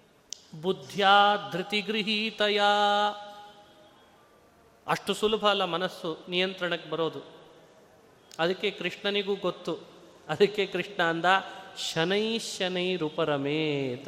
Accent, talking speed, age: native, 75 wpm, 30-49